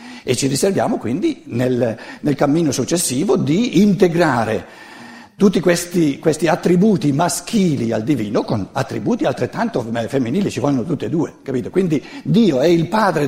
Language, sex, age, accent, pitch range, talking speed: Italian, male, 60-79, native, 115-170 Hz, 145 wpm